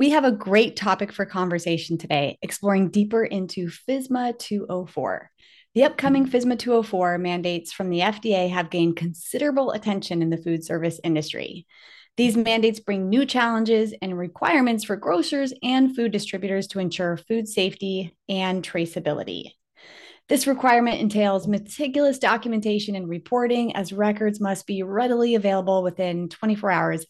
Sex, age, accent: female, 30-49, American